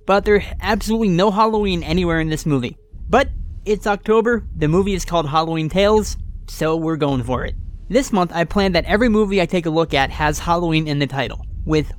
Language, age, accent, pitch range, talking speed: English, 30-49, American, 140-185 Hz, 205 wpm